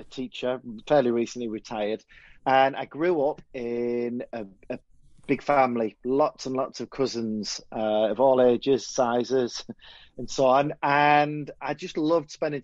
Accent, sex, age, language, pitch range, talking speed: British, male, 30-49, English, 120-155 Hz, 150 wpm